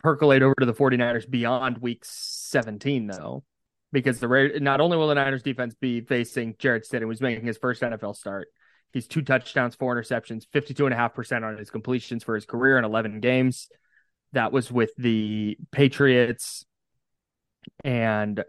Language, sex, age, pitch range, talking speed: English, male, 20-39, 110-135 Hz, 160 wpm